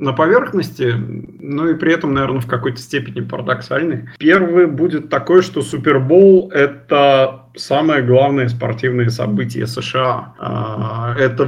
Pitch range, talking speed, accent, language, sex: 115-135 Hz, 125 wpm, native, Russian, male